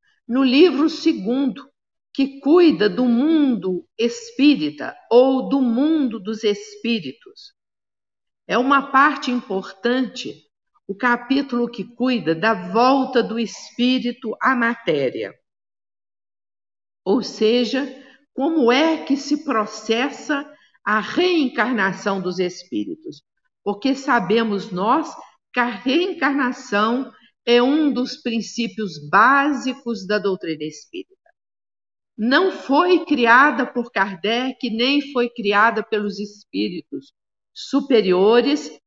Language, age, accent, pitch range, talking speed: Portuguese, 50-69, Brazilian, 210-275 Hz, 95 wpm